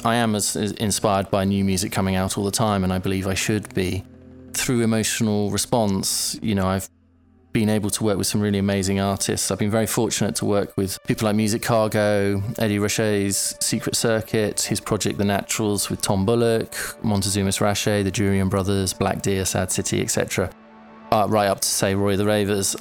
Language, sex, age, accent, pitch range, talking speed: English, male, 20-39, British, 95-110 Hz, 190 wpm